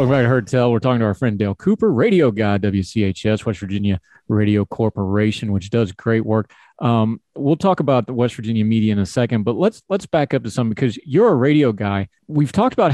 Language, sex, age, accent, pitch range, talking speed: English, male, 30-49, American, 110-140 Hz, 220 wpm